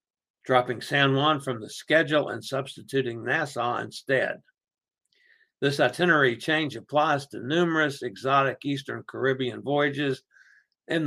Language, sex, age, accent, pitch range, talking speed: English, male, 60-79, American, 125-155 Hz, 115 wpm